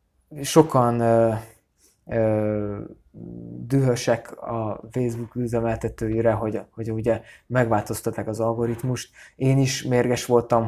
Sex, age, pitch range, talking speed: male, 20-39, 110-135 Hz, 95 wpm